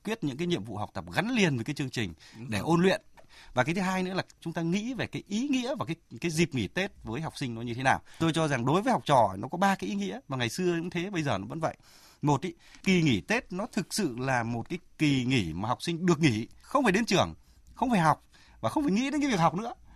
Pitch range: 120-170 Hz